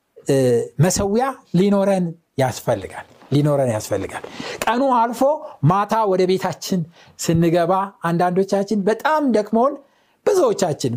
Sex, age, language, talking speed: male, 60-79, Amharic, 80 wpm